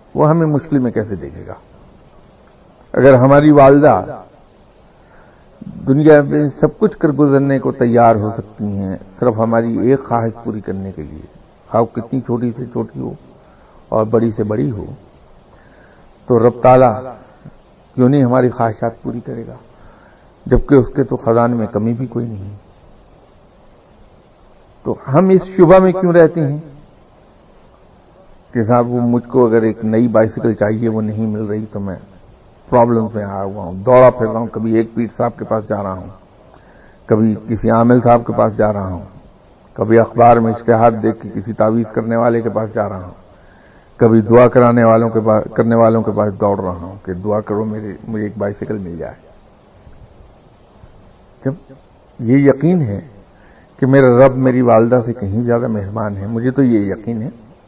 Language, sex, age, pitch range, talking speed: Urdu, male, 50-69, 105-125 Hz, 170 wpm